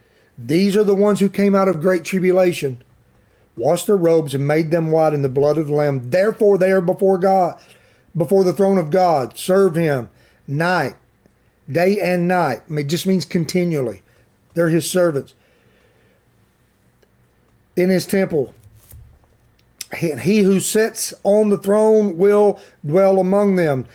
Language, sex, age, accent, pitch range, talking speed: English, male, 40-59, American, 150-185 Hz, 150 wpm